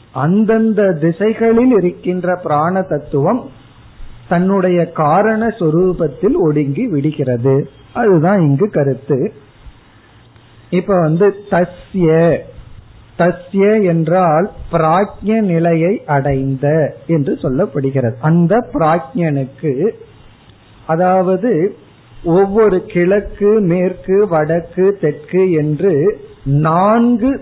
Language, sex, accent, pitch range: Tamil, male, native, 145-200 Hz